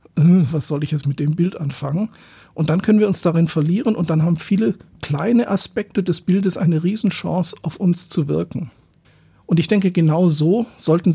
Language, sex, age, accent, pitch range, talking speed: German, male, 50-69, German, 155-190 Hz, 190 wpm